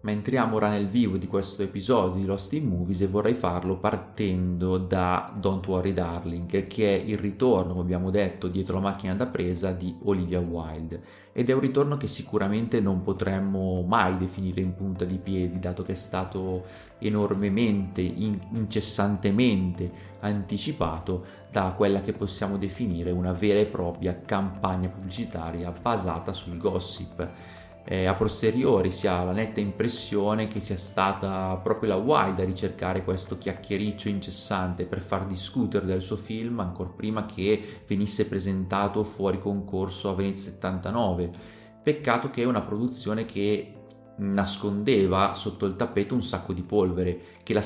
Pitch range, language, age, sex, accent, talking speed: 90-105 Hz, Italian, 30-49, male, native, 150 wpm